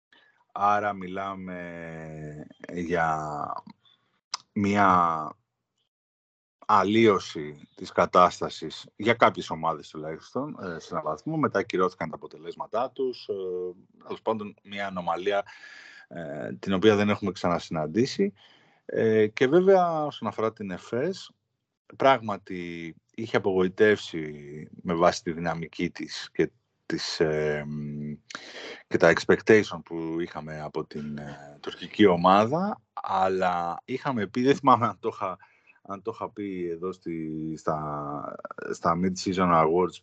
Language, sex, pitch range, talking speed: Greek, male, 80-105 Hz, 100 wpm